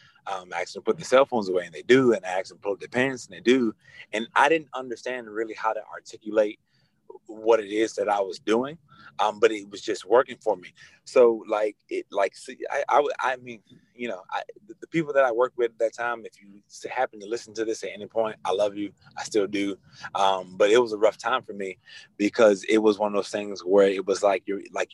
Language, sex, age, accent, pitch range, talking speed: English, male, 30-49, American, 105-155 Hz, 255 wpm